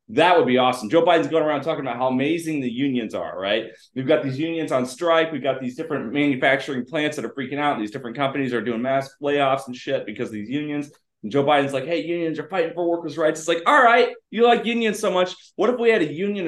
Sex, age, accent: male, 30-49, American